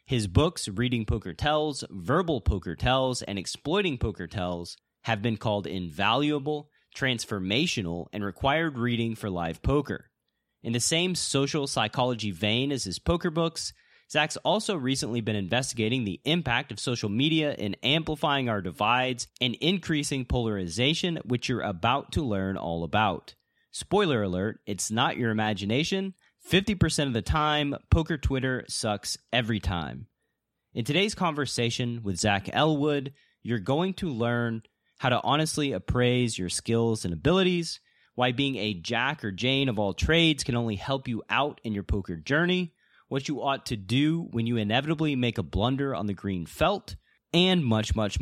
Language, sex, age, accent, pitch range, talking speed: English, male, 30-49, American, 105-150 Hz, 155 wpm